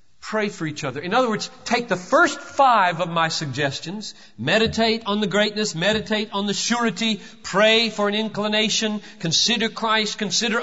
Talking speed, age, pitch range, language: 165 wpm, 50-69, 215-280 Hz, English